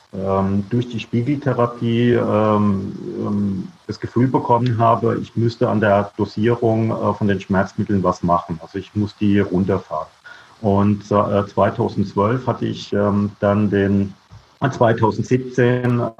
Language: German